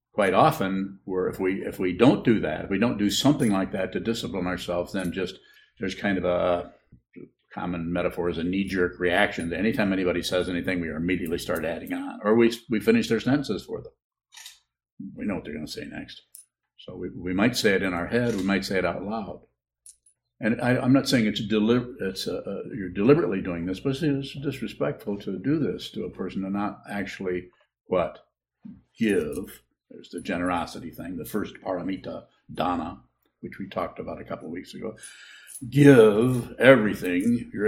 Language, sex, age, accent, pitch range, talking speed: English, male, 60-79, American, 90-130 Hz, 195 wpm